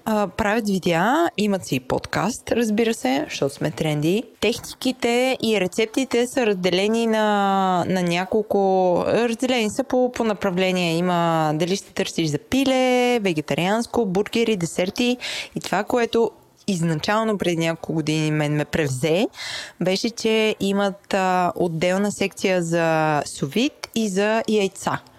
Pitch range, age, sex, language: 170-230 Hz, 20-39, female, Bulgarian